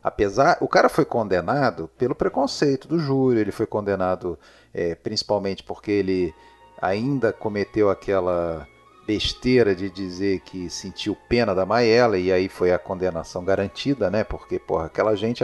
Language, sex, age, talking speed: Portuguese, male, 40-59, 145 wpm